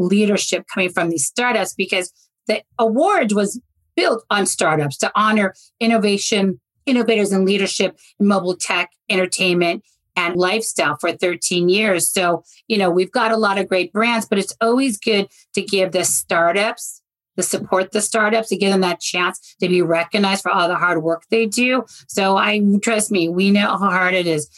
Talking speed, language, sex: 185 wpm, English, female